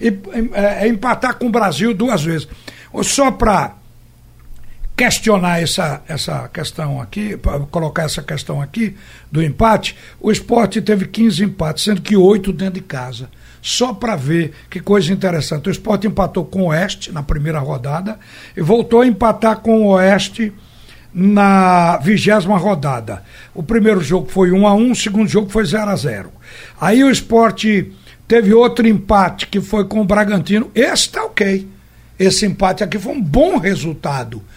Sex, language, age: male, Portuguese, 60-79